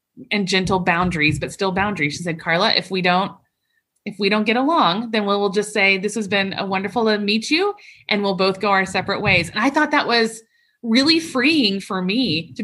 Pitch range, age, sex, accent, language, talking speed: 185-255 Hz, 30-49, female, American, English, 220 wpm